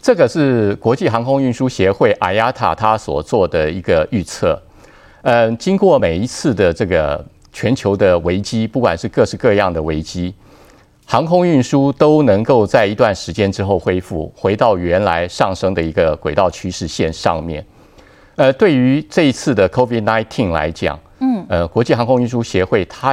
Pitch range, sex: 90-120 Hz, male